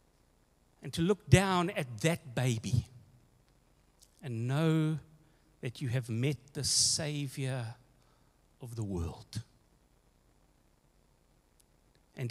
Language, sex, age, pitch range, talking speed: English, male, 60-79, 110-160 Hz, 95 wpm